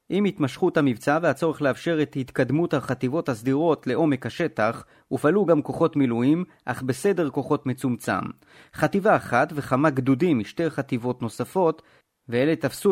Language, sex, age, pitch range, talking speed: Hebrew, male, 30-49, 130-160 Hz, 130 wpm